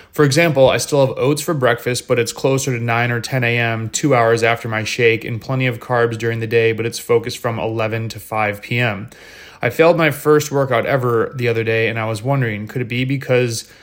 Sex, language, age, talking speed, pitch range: male, English, 20-39, 230 wpm, 115-130 Hz